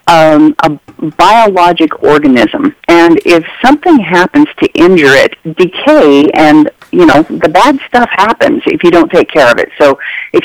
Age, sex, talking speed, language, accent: 50-69, female, 155 wpm, English, American